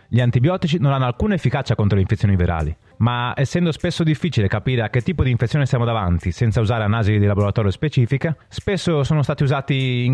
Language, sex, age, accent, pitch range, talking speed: Italian, male, 30-49, native, 105-150 Hz, 195 wpm